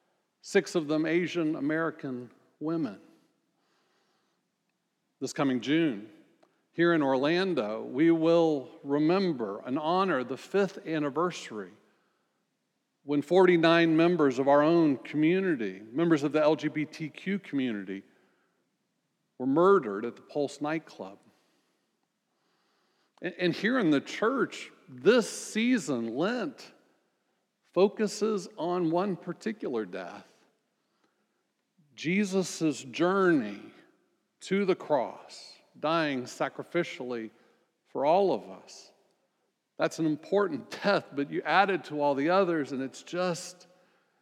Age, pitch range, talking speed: 50-69, 145-180 Hz, 105 wpm